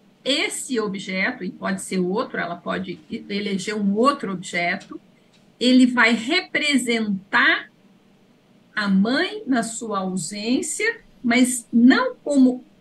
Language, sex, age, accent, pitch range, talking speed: Portuguese, female, 50-69, Brazilian, 205-255 Hz, 110 wpm